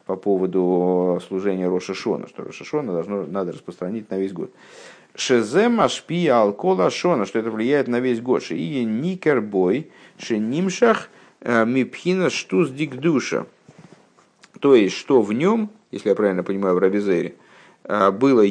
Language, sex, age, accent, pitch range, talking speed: Russian, male, 50-69, native, 95-140 Hz, 135 wpm